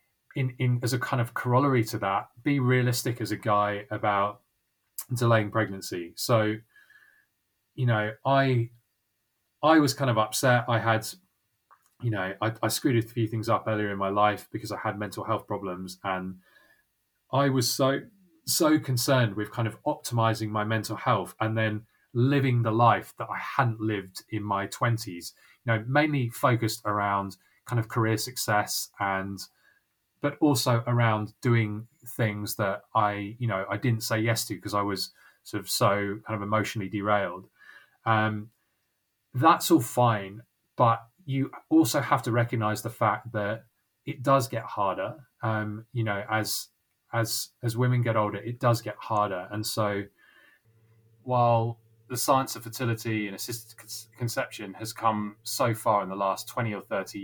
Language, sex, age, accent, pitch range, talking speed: English, male, 20-39, British, 105-125 Hz, 165 wpm